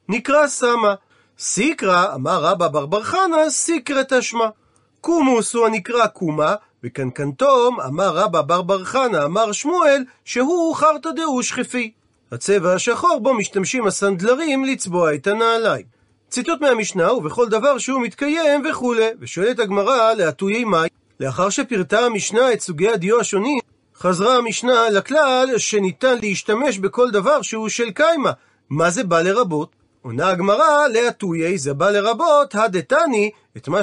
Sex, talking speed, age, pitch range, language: male, 135 wpm, 40-59, 190-265 Hz, Hebrew